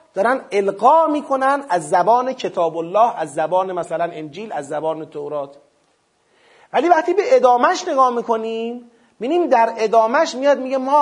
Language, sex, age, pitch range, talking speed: Persian, male, 40-59, 170-260 Hz, 140 wpm